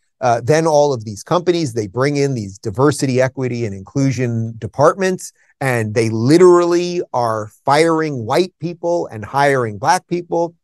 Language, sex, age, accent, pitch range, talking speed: Hebrew, male, 30-49, American, 120-165 Hz, 150 wpm